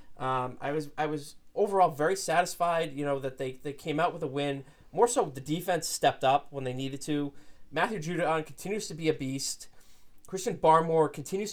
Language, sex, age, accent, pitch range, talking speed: English, male, 20-39, American, 135-160 Hz, 200 wpm